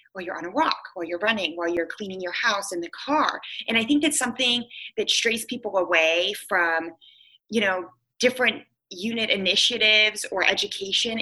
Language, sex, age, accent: English, female, 20-39, American